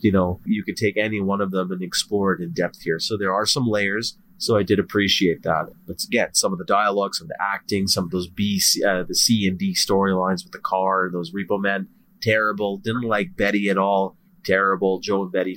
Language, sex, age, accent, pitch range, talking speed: English, male, 30-49, American, 95-115 Hz, 230 wpm